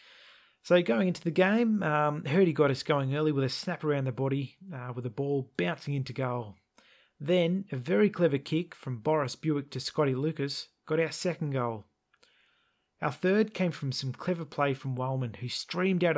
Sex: male